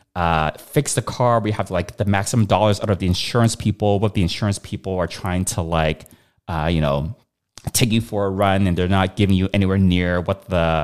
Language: English